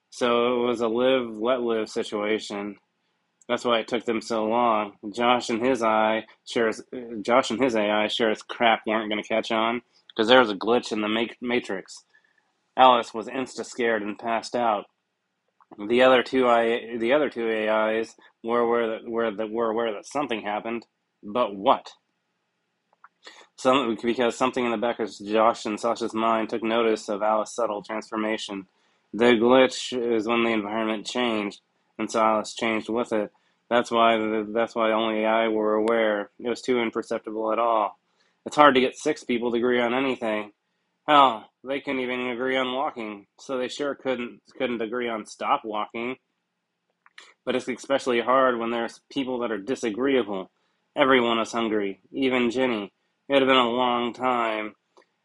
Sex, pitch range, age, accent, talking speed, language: male, 110-125 Hz, 20-39, American, 170 wpm, English